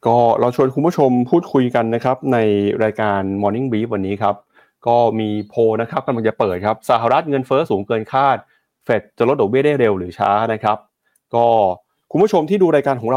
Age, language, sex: 20-39, Thai, male